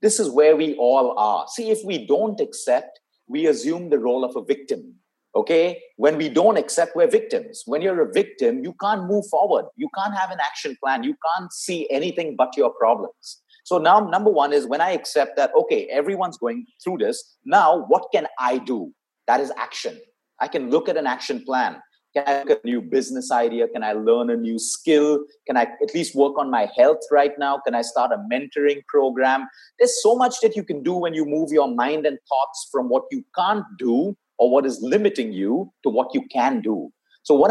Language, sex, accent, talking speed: Hindi, male, native, 215 wpm